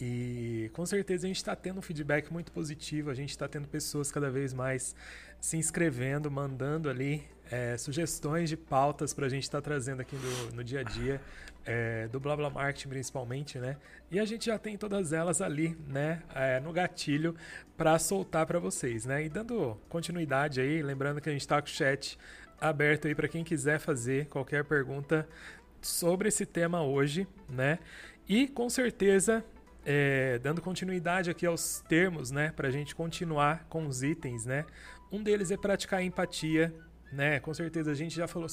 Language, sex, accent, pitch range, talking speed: Portuguese, male, Brazilian, 140-170 Hz, 180 wpm